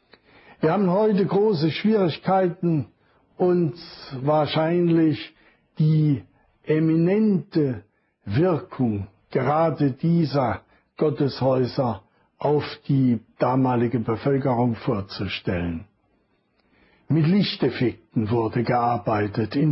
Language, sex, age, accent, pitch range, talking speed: German, male, 60-79, German, 140-170 Hz, 70 wpm